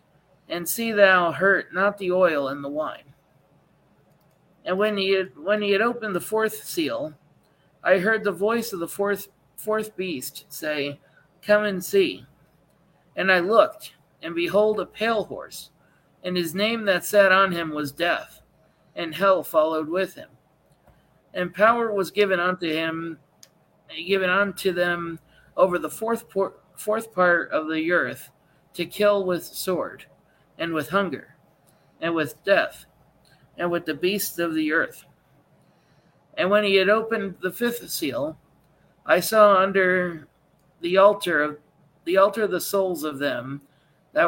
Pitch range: 160-200 Hz